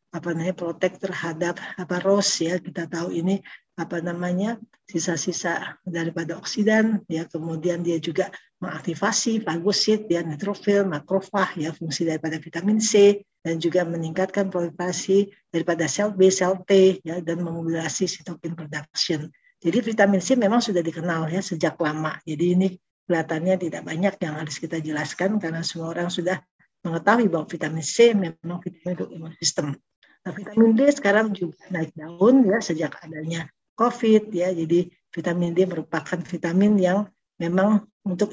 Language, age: Indonesian, 50-69